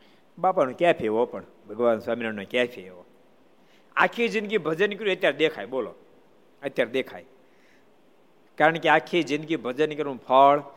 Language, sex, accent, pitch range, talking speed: Gujarati, male, native, 135-170 Hz, 130 wpm